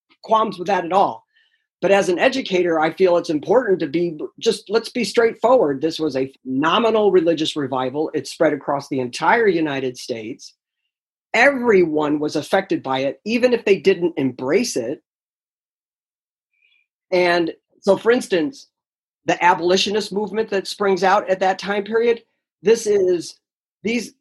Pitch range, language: 175-225 Hz, English